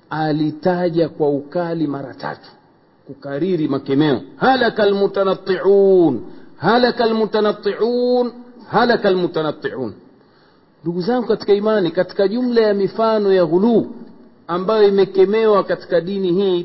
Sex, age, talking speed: male, 50-69, 100 wpm